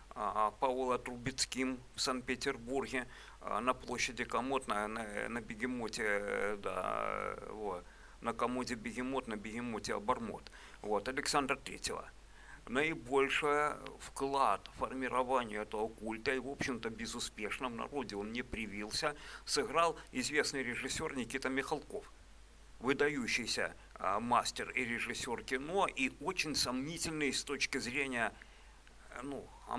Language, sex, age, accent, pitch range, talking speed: Russian, male, 50-69, native, 110-135 Hz, 110 wpm